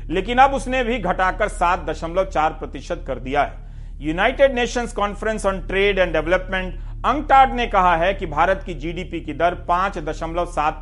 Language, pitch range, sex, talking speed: Hindi, 160-215 Hz, male, 155 wpm